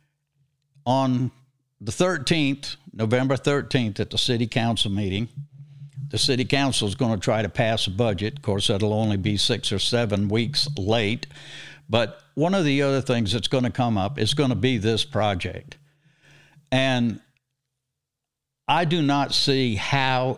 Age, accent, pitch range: 60-79, American, 115-145 Hz